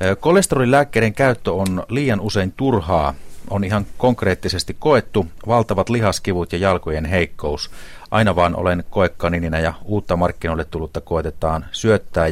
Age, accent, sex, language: 30-49, native, male, Finnish